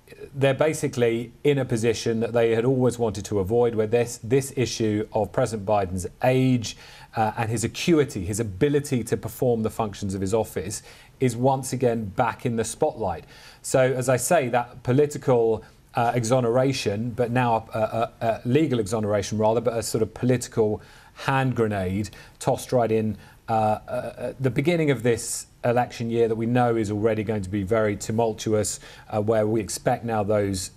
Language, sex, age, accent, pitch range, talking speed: English, male, 40-59, British, 105-125 Hz, 175 wpm